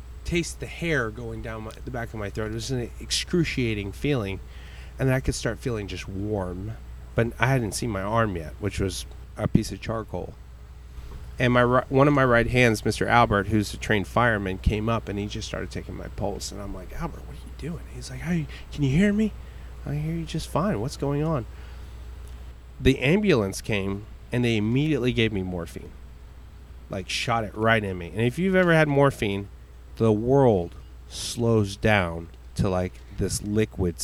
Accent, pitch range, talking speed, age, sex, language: American, 85-120 Hz, 190 wpm, 30-49, male, English